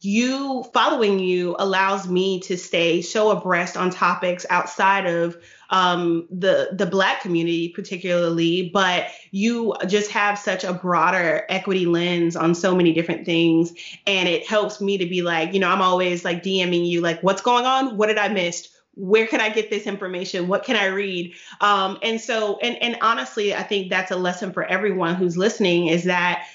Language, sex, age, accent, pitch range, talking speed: English, female, 30-49, American, 175-205 Hz, 185 wpm